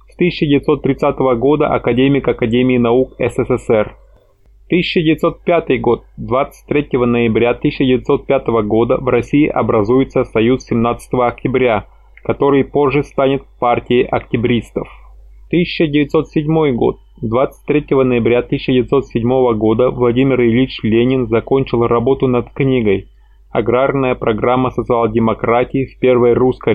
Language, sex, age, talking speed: Russian, male, 20-39, 95 wpm